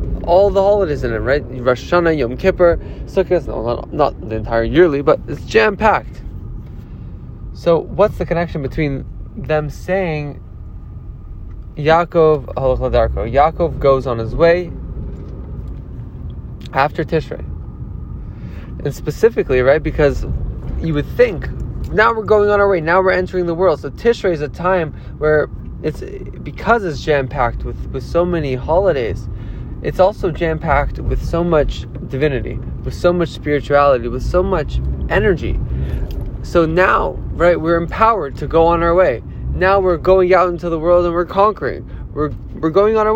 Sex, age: male, 20-39